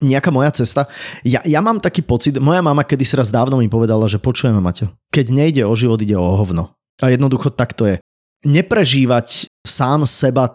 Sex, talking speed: male, 190 wpm